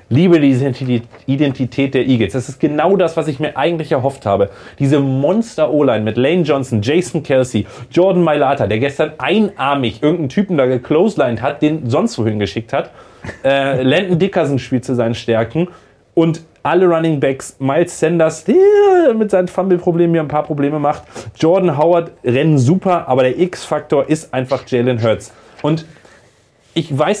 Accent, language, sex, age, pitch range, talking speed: German, German, male, 30-49, 130-165 Hz, 160 wpm